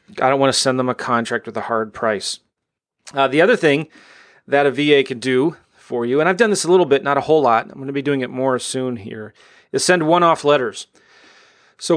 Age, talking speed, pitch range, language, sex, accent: 30-49, 240 wpm, 120-140 Hz, English, male, American